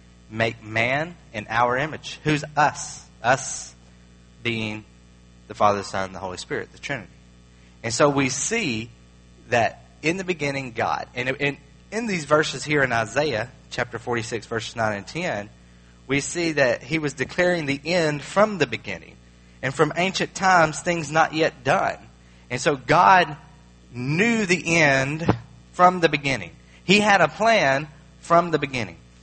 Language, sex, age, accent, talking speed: English, male, 30-49, American, 160 wpm